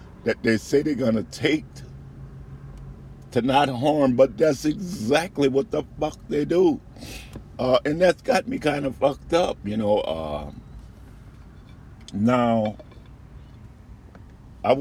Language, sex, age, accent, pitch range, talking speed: English, male, 50-69, American, 85-115 Hz, 130 wpm